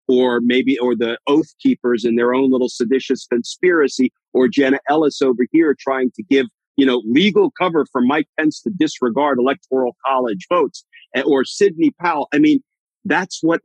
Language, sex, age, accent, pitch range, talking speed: English, male, 50-69, American, 110-150 Hz, 170 wpm